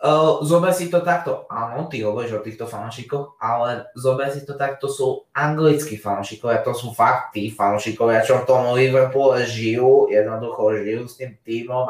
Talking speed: 170 wpm